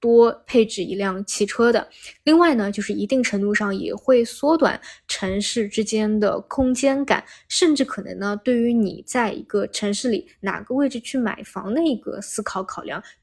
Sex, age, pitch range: female, 20-39, 200-255 Hz